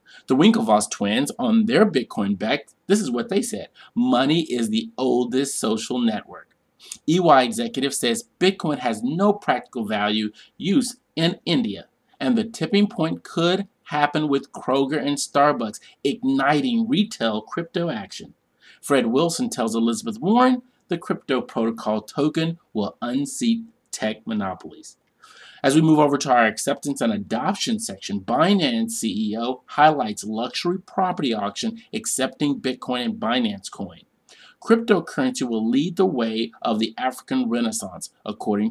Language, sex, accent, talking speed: English, male, American, 135 wpm